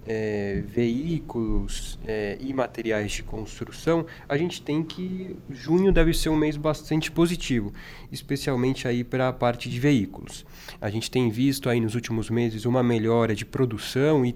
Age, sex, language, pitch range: 20-39, male, Portuguese, 115-145 Hz